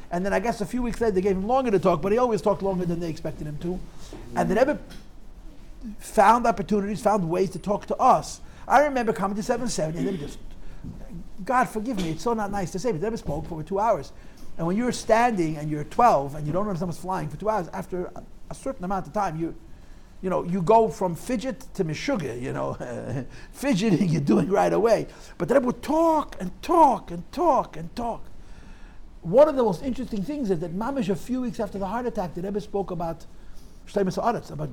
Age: 50-69